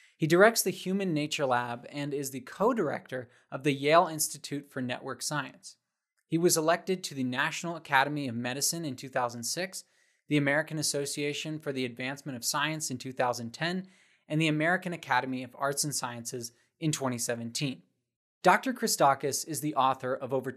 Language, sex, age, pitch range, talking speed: English, male, 20-39, 130-165 Hz, 160 wpm